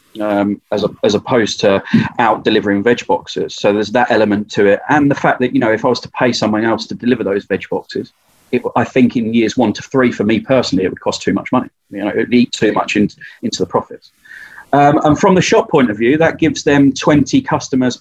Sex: male